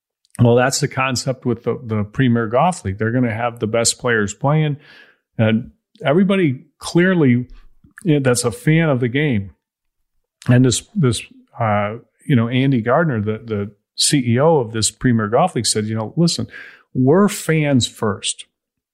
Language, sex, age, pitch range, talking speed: English, male, 40-59, 115-145 Hz, 165 wpm